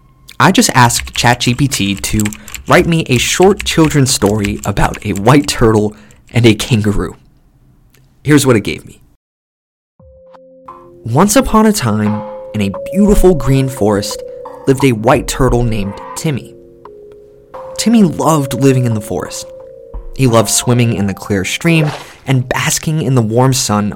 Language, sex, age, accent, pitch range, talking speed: English, male, 20-39, American, 105-165 Hz, 145 wpm